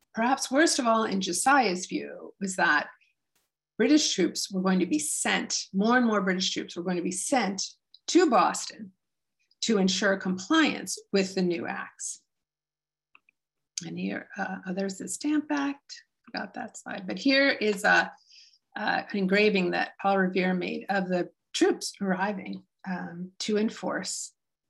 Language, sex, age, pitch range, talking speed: English, female, 50-69, 190-270 Hz, 155 wpm